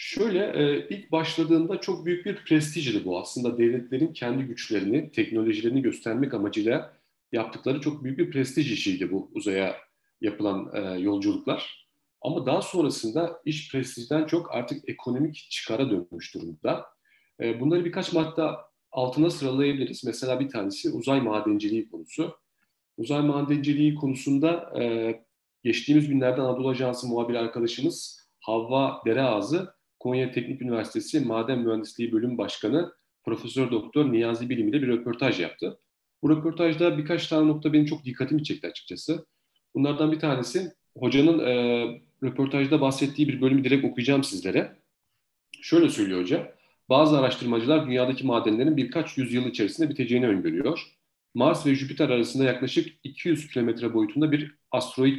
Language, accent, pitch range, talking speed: Turkish, native, 125-160 Hz, 130 wpm